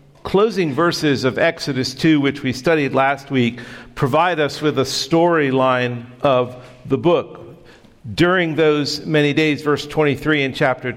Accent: American